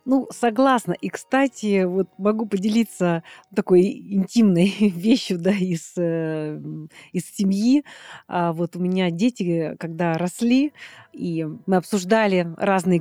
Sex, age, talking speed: female, 30-49, 110 wpm